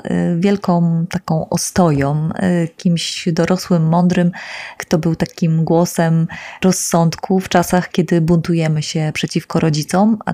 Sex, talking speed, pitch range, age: female, 110 wpm, 160-185 Hz, 20-39